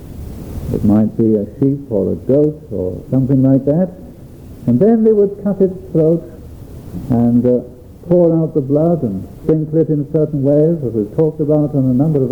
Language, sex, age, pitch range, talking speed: English, male, 60-79, 125-175 Hz, 190 wpm